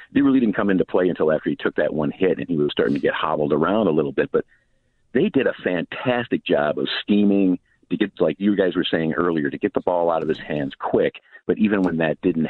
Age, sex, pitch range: 50-69, male, 75-105 Hz